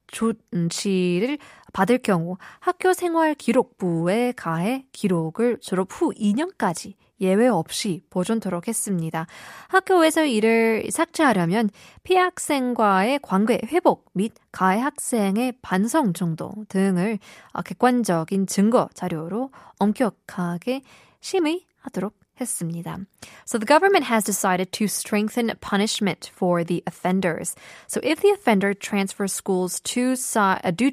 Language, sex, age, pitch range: Korean, female, 20-39, 180-235 Hz